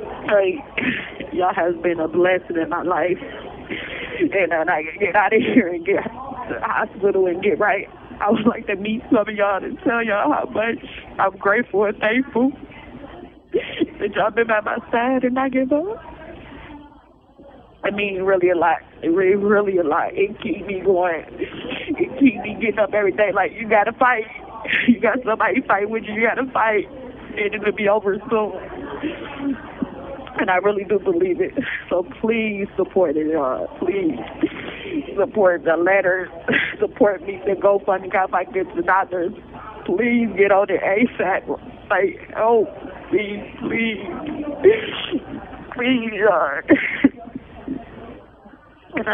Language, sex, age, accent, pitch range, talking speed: English, female, 20-39, American, 200-275 Hz, 160 wpm